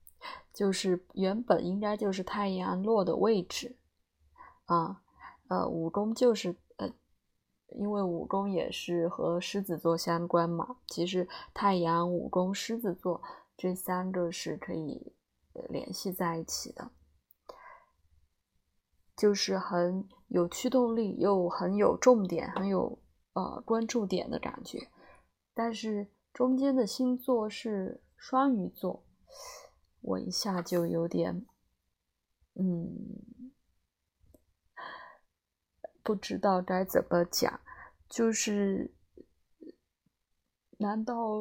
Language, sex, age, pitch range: Chinese, female, 20-39, 175-230 Hz